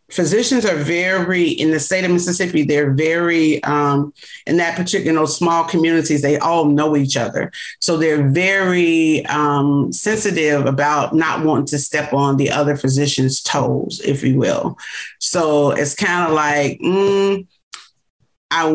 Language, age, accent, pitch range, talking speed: English, 40-59, American, 145-175 Hz, 145 wpm